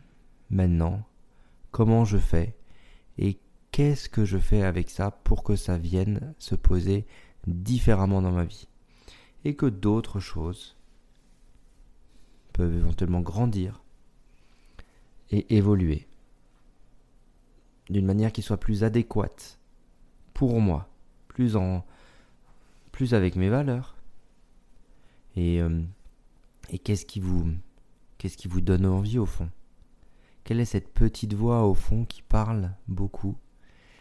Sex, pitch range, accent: male, 85-105 Hz, French